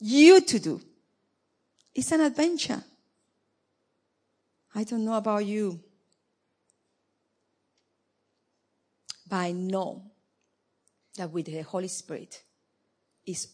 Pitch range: 180-250 Hz